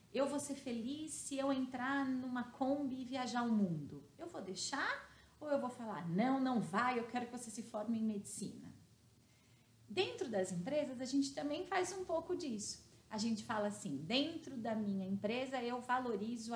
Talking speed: 185 wpm